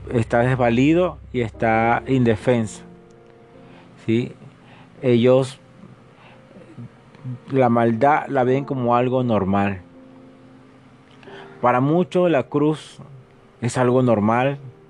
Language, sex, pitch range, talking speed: Spanish, male, 110-130 Hz, 80 wpm